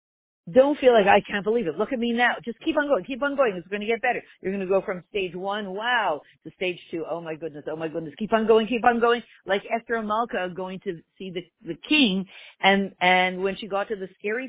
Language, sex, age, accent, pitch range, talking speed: English, female, 50-69, American, 180-245 Hz, 280 wpm